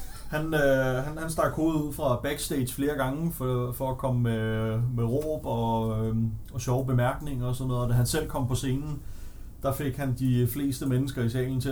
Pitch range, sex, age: 115-140 Hz, male, 30-49